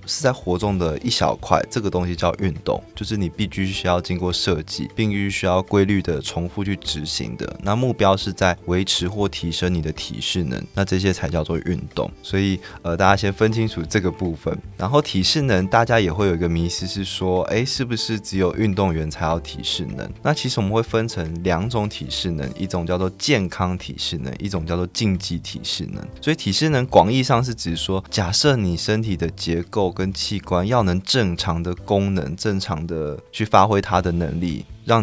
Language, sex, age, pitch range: Chinese, male, 20-39, 85-105 Hz